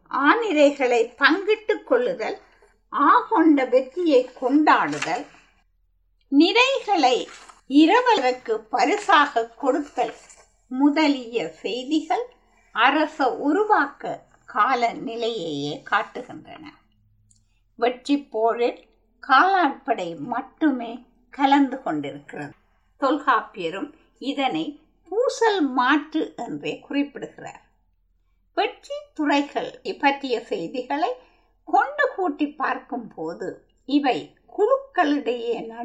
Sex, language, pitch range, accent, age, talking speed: female, Tamil, 230-315 Hz, native, 50-69, 50 wpm